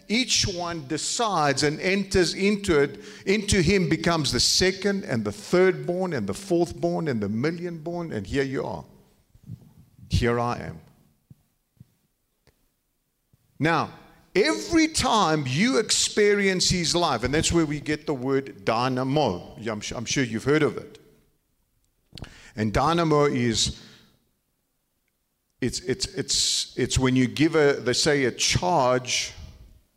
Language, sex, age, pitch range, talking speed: English, male, 50-69, 120-170 Hz, 135 wpm